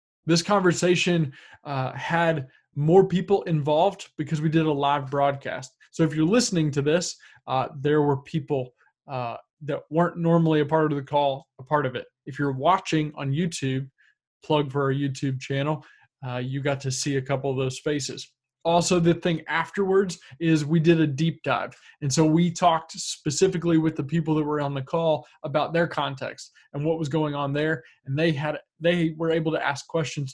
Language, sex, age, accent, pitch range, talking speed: English, male, 20-39, American, 135-160 Hz, 190 wpm